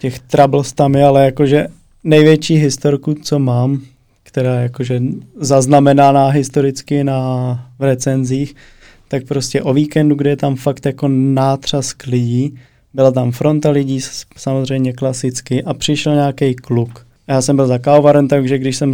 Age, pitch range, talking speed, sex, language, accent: 20-39, 125-140 Hz, 145 wpm, male, Czech, native